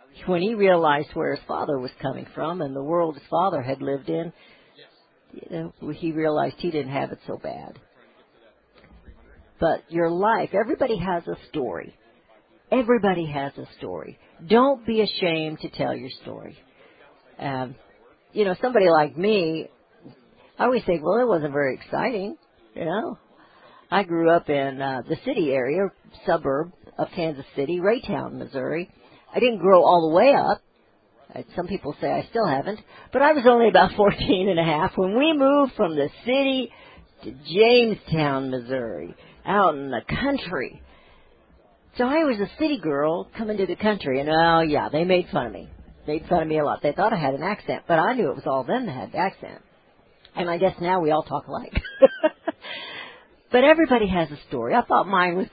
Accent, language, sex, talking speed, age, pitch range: American, English, female, 180 wpm, 60-79, 150-220 Hz